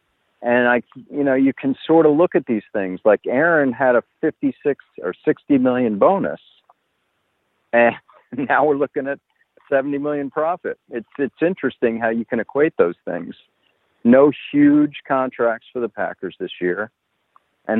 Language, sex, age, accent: English, male, 50-69, American